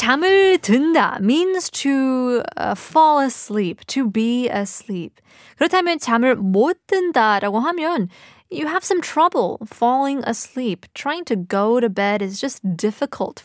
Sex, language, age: female, Korean, 20-39